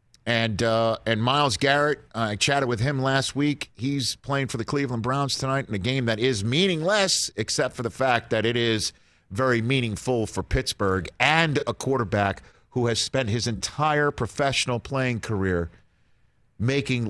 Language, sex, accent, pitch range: English, male, American, 95-130 Hz